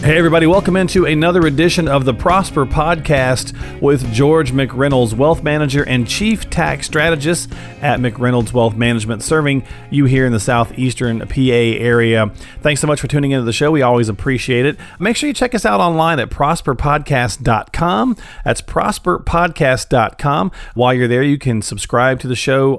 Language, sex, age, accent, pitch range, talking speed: English, male, 40-59, American, 115-155 Hz, 165 wpm